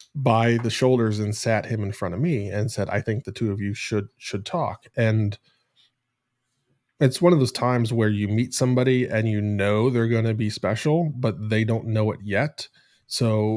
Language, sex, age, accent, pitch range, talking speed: English, male, 20-39, American, 105-125 Hz, 205 wpm